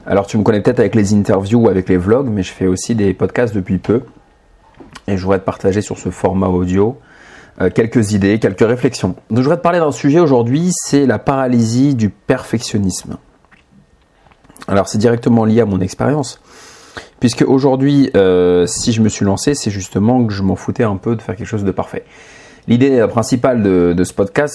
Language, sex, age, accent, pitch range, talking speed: English, male, 40-59, French, 95-120 Hz, 200 wpm